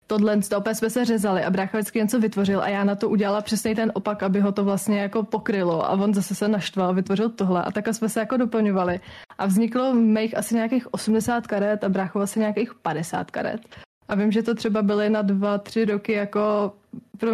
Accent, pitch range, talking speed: native, 200-225 Hz, 220 wpm